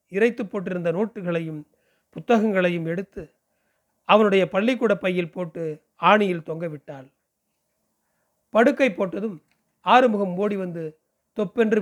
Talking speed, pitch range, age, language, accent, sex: 90 wpm, 165-210 Hz, 40-59, Tamil, native, male